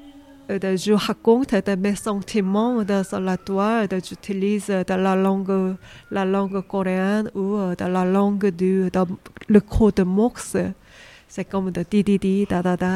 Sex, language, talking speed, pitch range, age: female, French, 125 wpm, 185-210 Hz, 20-39